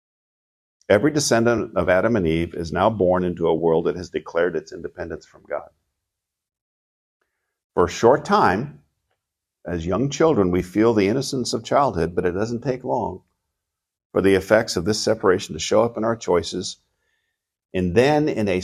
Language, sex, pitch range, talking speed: English, male, 85-120 Hz, 170 wpm